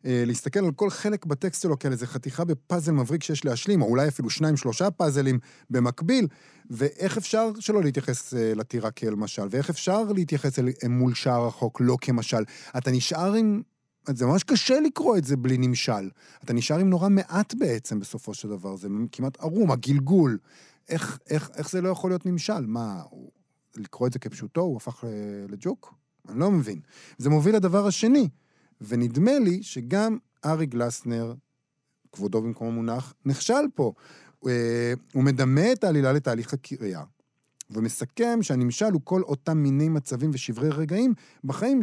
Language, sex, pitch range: Hebrew, male, 120-180 Hz